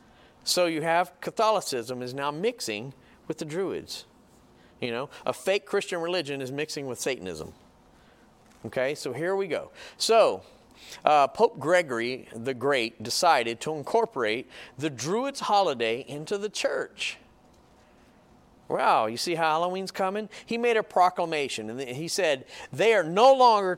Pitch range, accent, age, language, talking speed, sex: 135-195 Hz, American, 40-59, English, 145 wpm, male